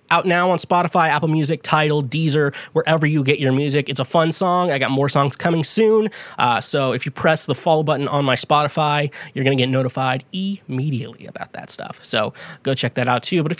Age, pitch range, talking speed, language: 20-39, 130-175 Hz, 225 wpm, English